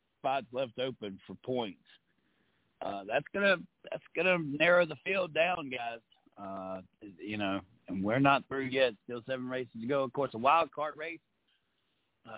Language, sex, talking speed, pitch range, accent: English, male, 170 wpm, 120-170 Hz, American